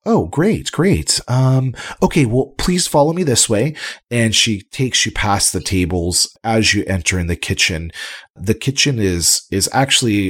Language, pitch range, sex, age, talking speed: English, 90-115 Hz, male, 30-49, 170 wpm